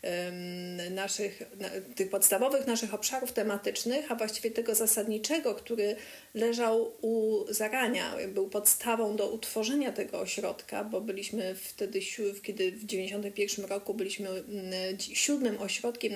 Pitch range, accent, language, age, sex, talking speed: 200-230 Hz, native, Polish, 30-49, female, 110 wpm